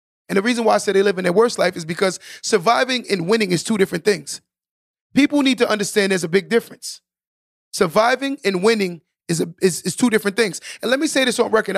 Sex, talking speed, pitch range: male, 235 wpm, 190-230 Hz